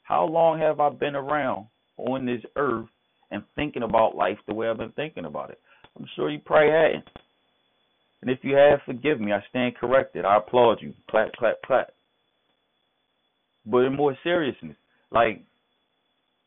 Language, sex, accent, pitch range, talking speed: English, male, American, 115-150 Hz, 170 wpm